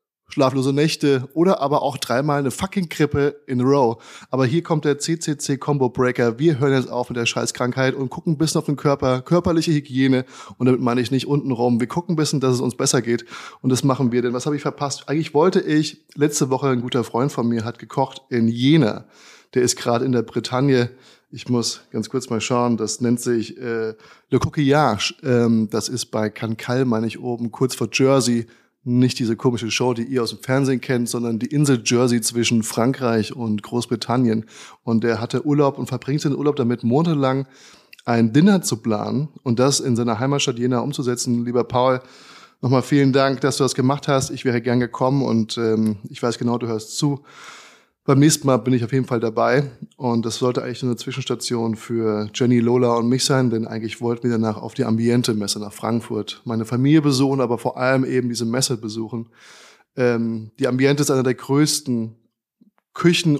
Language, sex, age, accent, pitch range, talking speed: German, male, 20-39, German, 120-140 Hz, 200 wpm